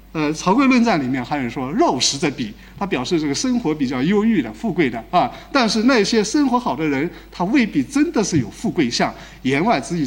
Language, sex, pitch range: Chinese, male, 140-225 Hz